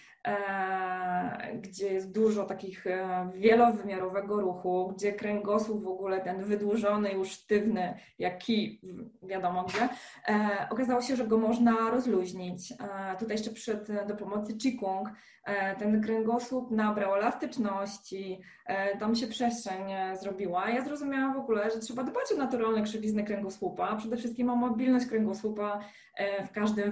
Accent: native